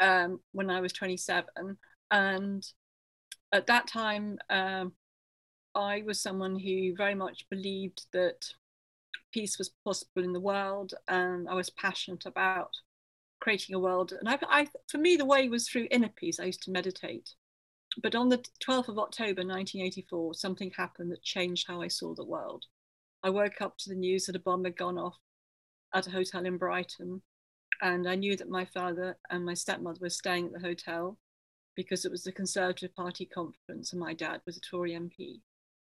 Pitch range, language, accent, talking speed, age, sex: 175-195 Hz, English, British, 180 wpm, 40-59, female